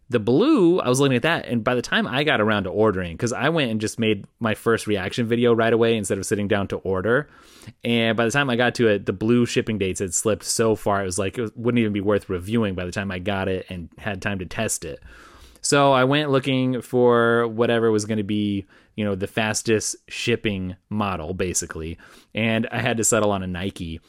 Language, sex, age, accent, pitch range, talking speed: English, male, 30-49, American, 100-125 Hz, 240 wpm